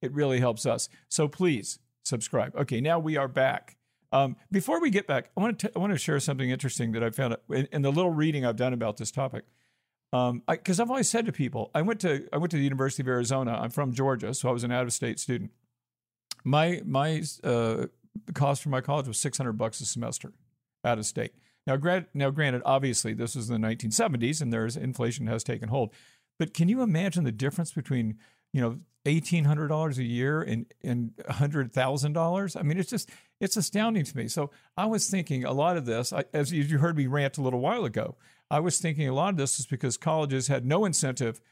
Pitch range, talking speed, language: 125-165 Hz, 220 wpm, English